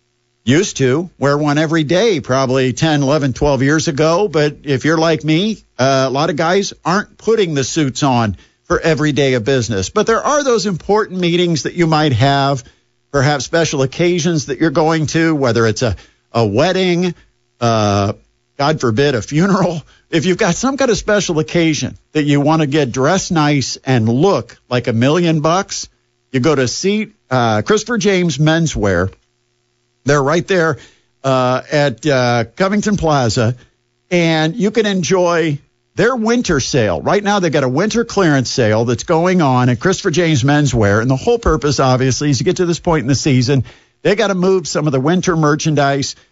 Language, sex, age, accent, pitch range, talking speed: English, male, 50-69, American, 130-175 Hz, 185 wpm